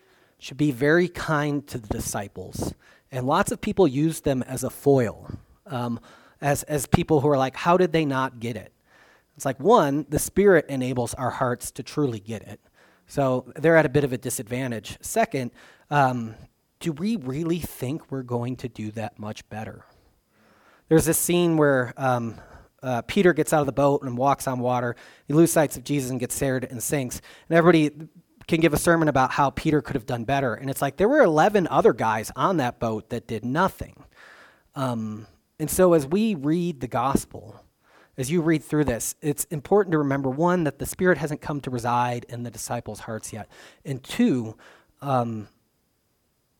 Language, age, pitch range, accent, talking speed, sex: English, 30-49, 120-155 Hz, American, 190 wpm, male